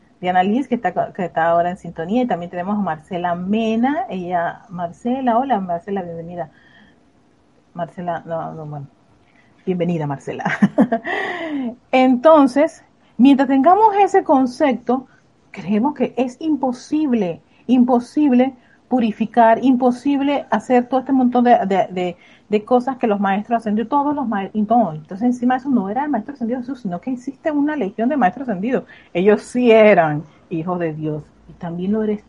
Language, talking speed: Spanish, 145 wpm